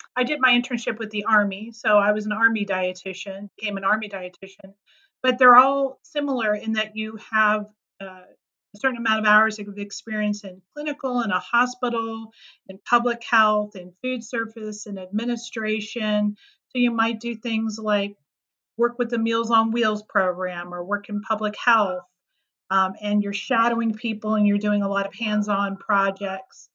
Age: 40-59